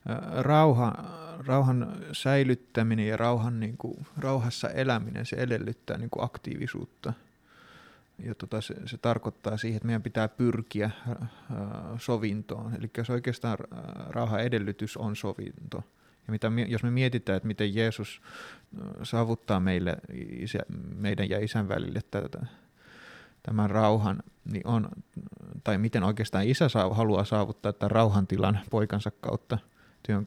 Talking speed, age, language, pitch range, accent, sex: 115 wpm, 30-49, Finnish, 105-120 Hz, native, male